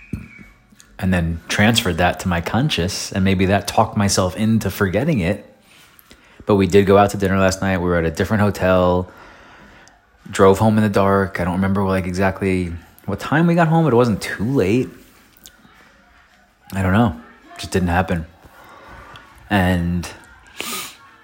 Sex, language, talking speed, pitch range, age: male, English, 165 wpm, 90-105 Hz, 30-49